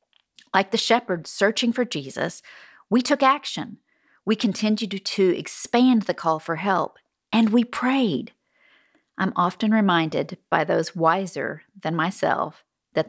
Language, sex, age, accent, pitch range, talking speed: English, female, 40-59, American, 165-220 Hz, 135 wpm